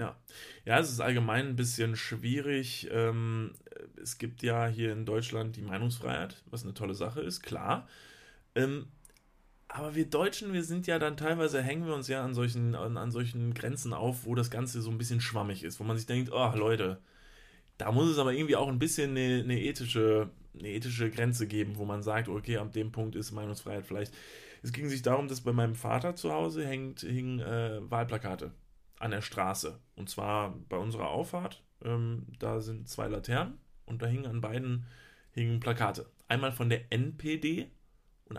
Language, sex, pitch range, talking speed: German, male, 110-135 Hz, 180 wpm